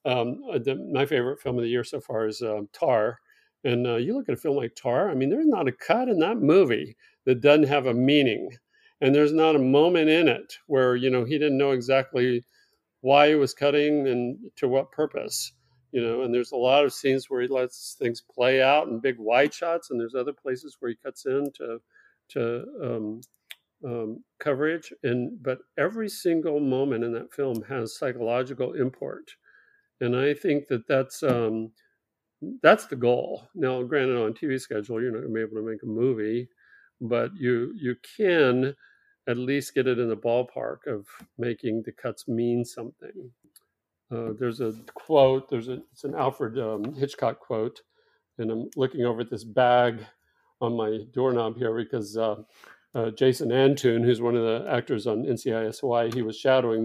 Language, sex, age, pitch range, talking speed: English, male, 50-69, 115-140 Hz, 185 wpm